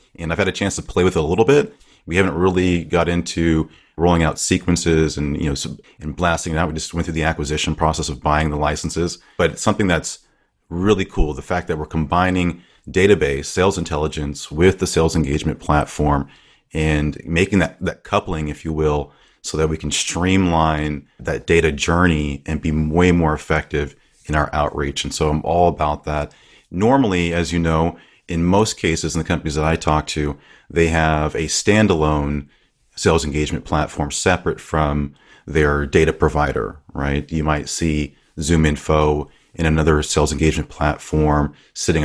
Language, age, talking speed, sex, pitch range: English, 30-49, 180 wpm, male, 75-85 Hz